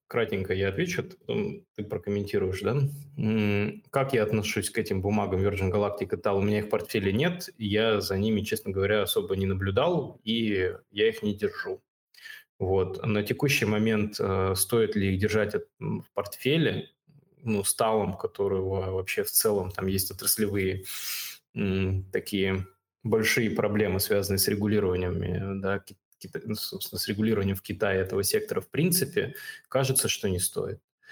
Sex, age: male, 20-39